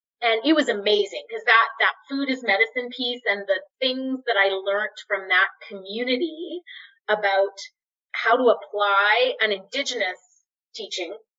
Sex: female